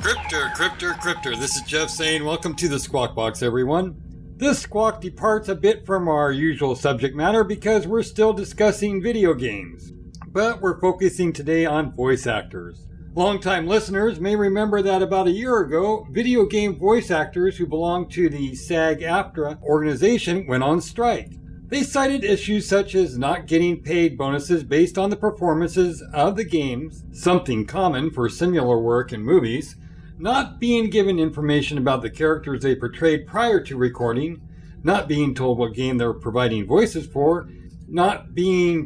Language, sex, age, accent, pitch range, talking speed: English, male, 60-79, American, 140-195 Hz, 160 wpm